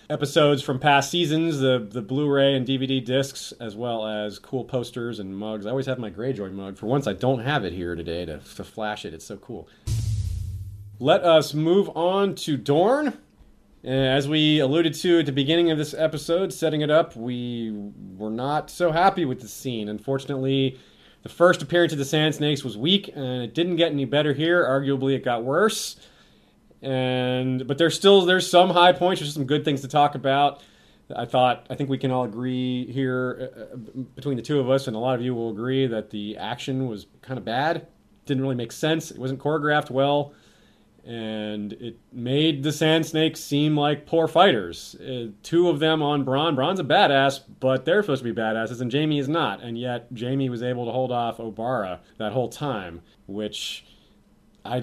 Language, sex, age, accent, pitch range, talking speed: English, male, 30-49, American, 120-150 Hz, 200 wpm